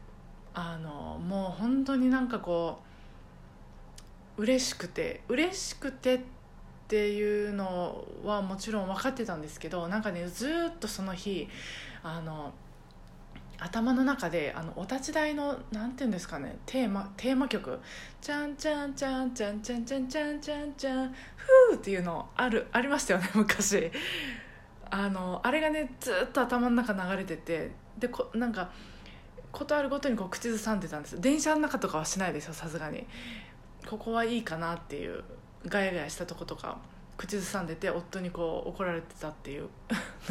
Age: 20-39